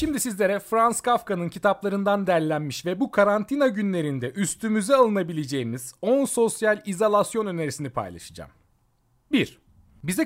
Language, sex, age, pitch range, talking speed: Turkish, male, 40-59, 125-205 Hz, 110 wpm